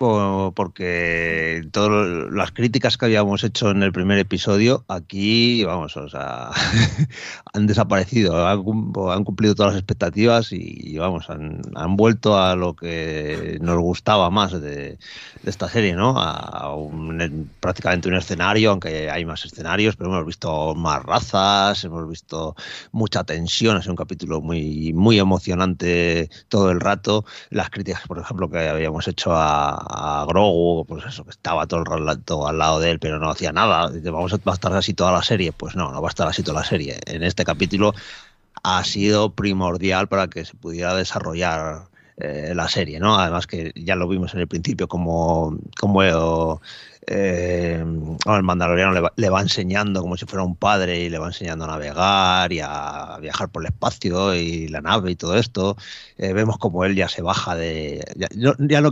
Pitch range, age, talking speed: 85-100 Hz, 30-49, 180 wpm